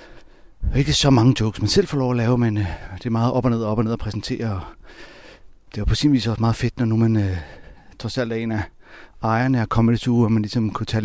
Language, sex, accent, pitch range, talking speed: Danish, male, native, 100-120 Hz, 275 wpm